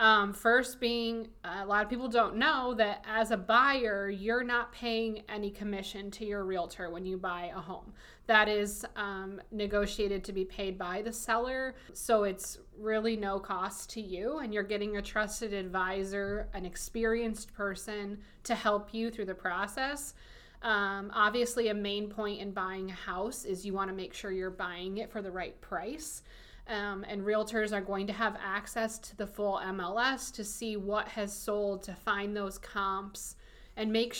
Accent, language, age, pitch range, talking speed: American, English, 20-39, 195-225 Hz, 180 wpm